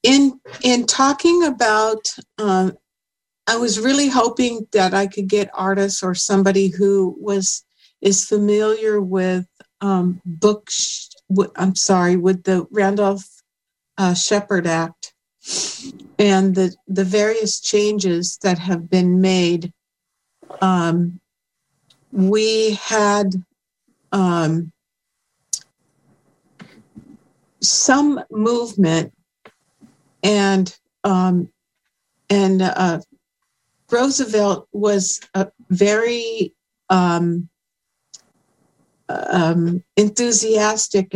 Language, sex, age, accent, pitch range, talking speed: English, female, 50-69, American, 180-210 Hz, 85 wpm